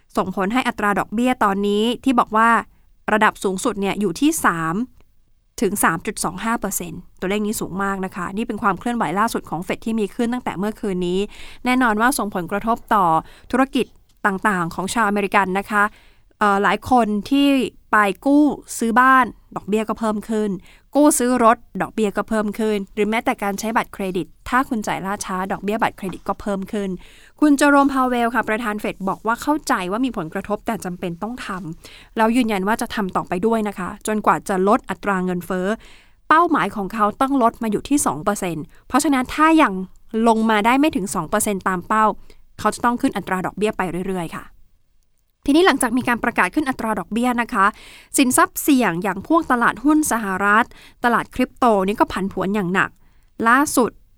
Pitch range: 195-240 Hz